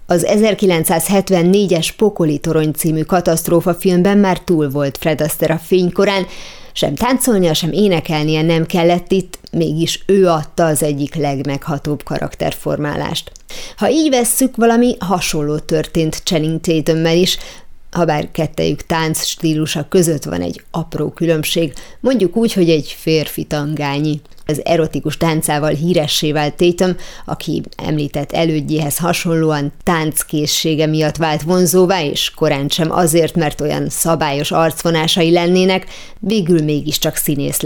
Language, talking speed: Hungarian, 125 wpm